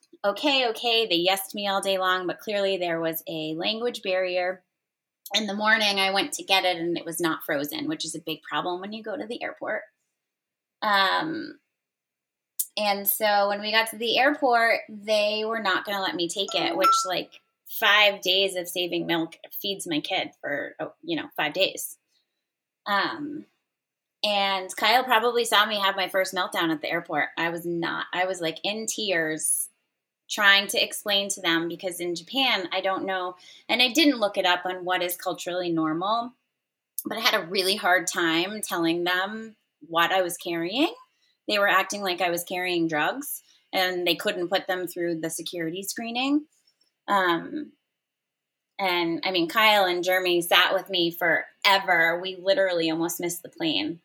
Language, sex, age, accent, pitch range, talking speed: English, female, 20-39, American, 175-220 Hz, 180 wpm